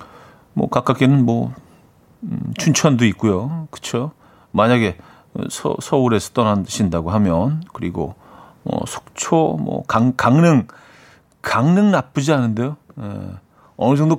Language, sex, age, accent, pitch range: Korean, male, 40-59, native, 115-155 Hz